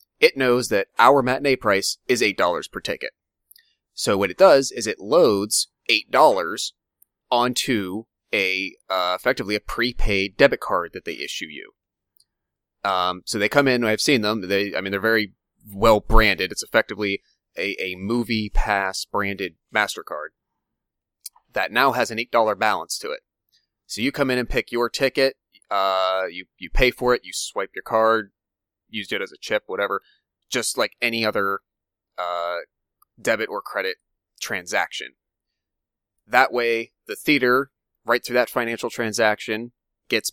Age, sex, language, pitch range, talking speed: 30-49, male, English, 100-125 Hz, 160 wpm